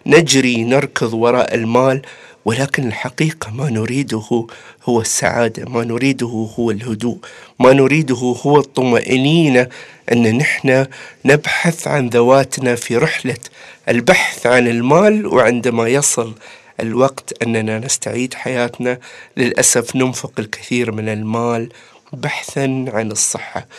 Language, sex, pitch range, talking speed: Arabic, male, 115-145 Hz, 105 wpm